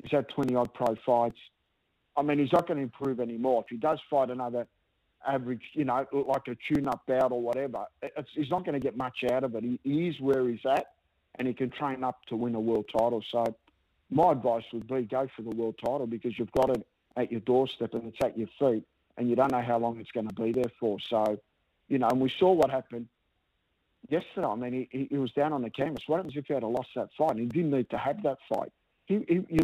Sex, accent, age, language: male, Australian, 50-69, English